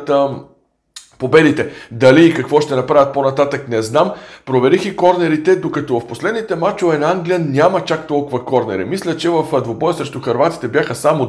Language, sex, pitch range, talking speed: Bulgarian, male, 130-165 Hz, 160 wpm